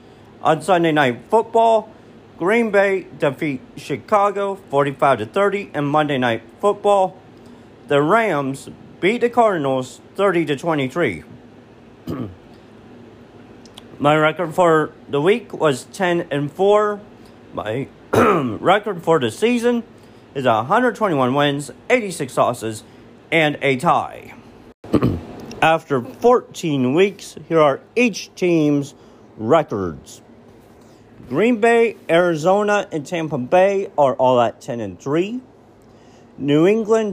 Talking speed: 100 wpm